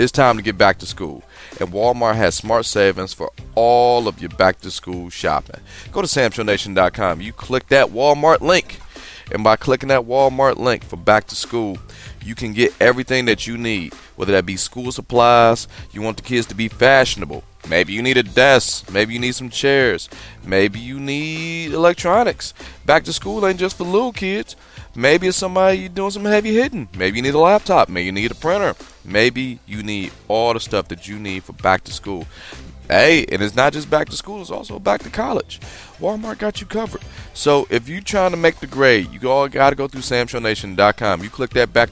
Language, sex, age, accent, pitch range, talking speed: English, male, 30-49, American, 105-150 Hz, 210 wpm